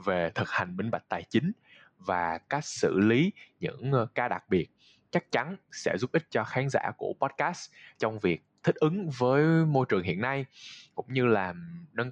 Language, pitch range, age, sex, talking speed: Vietnamese, 100-145 Hz, 20-39, male, 190 wpm